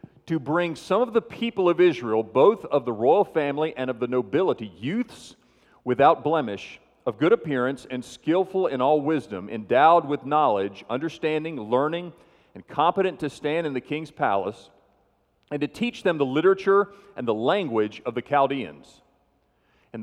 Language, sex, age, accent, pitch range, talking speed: English, male, 40-59, American, 125-165 Hz, 160 wpm